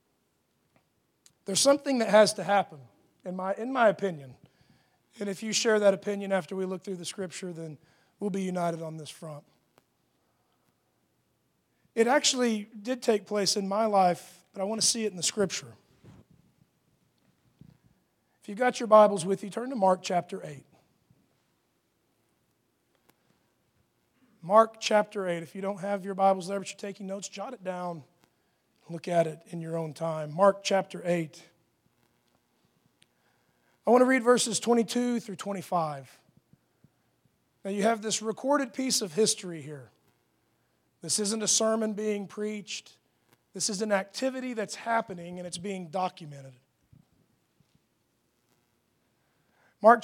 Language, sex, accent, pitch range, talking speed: English, male, American, 170-215 Hz, 145 wpm